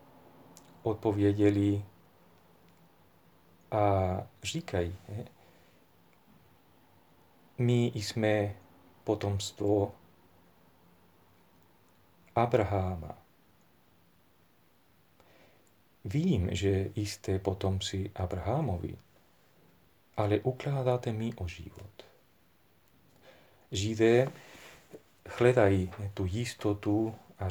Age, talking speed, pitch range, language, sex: 40-59, 50 wpm, 90-110 Hz, Czech, male